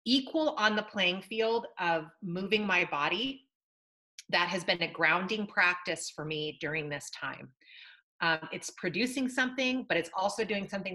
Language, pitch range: English, 180-240 Hz